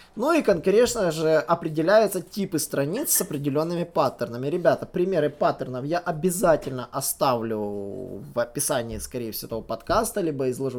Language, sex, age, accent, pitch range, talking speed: Russian, male, 20-39, native, 140-205 Hz, 135 wpm